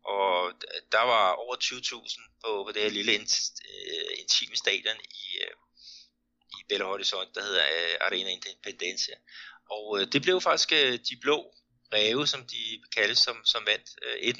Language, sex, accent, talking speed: Danish, male, native, 160 wpm